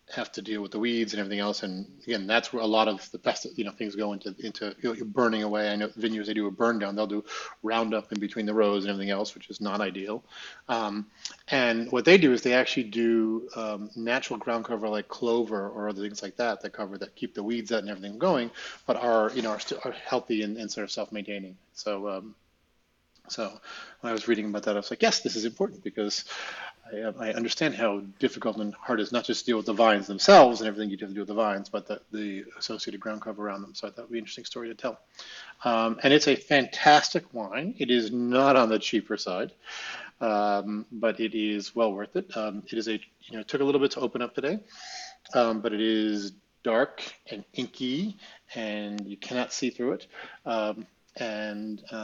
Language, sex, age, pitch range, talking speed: English, male, 30-49, 105-115 Hz, 230 wpm